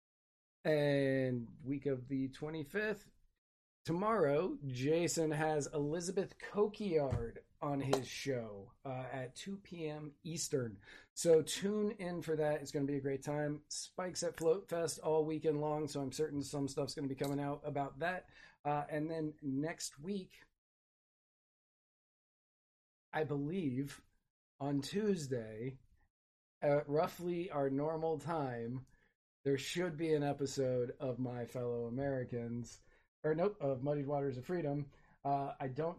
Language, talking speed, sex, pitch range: English, 135 wpm, male, 135-160 Hz